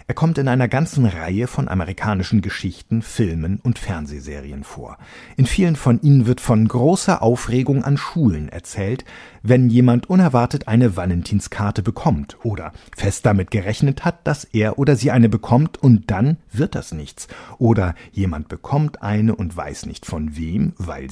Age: 50-69